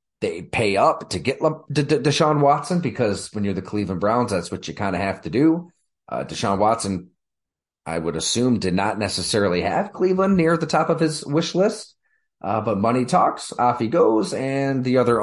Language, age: English, 30-49